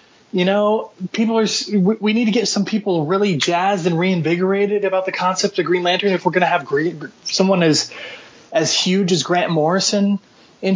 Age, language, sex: 30-49, English, male